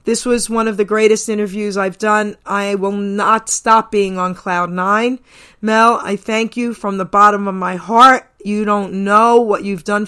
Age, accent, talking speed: 40-59, American, 195 wpm